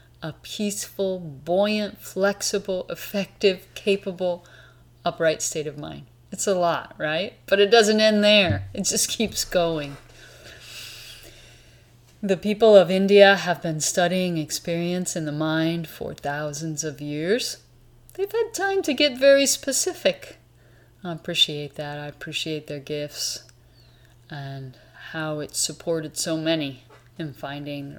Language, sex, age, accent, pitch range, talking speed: English, female, 30-49, American, 125-195 Hz, 130 wpm